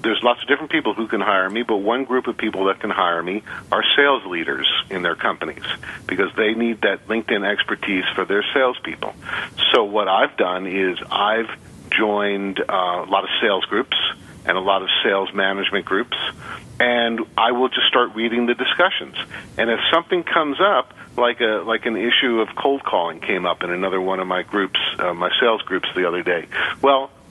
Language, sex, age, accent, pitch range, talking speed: English, male, 50-69, American, 100-120 Hz, 195 wpm